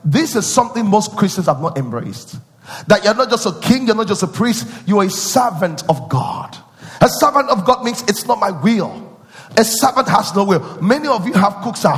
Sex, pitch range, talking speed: male, 160-225 Hz, 220 wpm